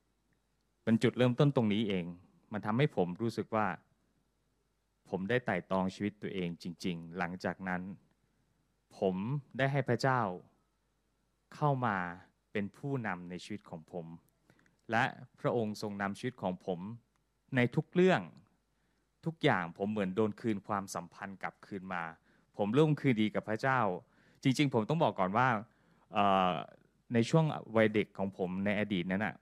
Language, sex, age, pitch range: Thai, male, 20-39, 95-125 Hz